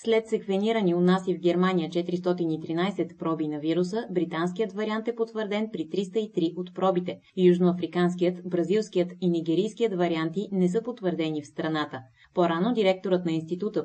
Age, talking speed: 20-39, 135 wpm